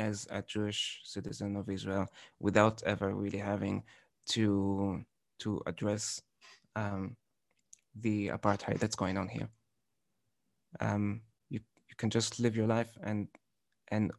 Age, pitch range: 20-39, 100-115 Hz